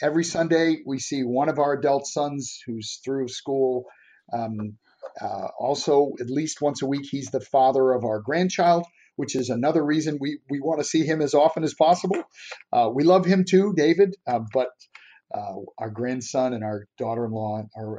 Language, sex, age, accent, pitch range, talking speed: English, male, 40-59, American, 125-155 Hz, 180 wpm